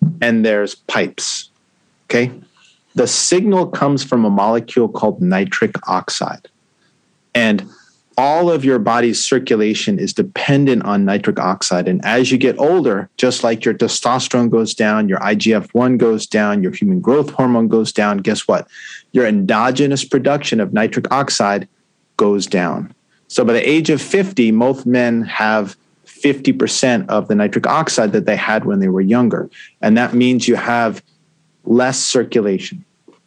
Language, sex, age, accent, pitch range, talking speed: English, male, 40-59, American, 110-140 Hz, 150 wpm